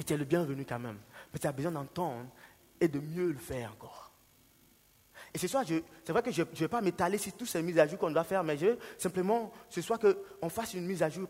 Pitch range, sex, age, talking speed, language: 150-215 Hz, male, 30-49, 285 wpm, French